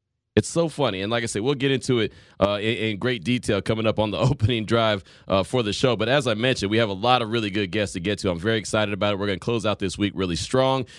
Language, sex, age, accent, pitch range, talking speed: English, male, 30-49, American, 105-135 Hz, 300 wpm